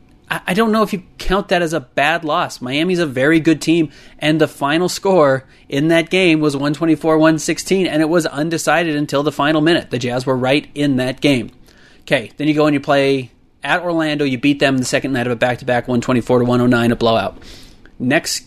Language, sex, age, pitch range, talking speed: English, male, 30-49, 125-150 Hz, 205 wpm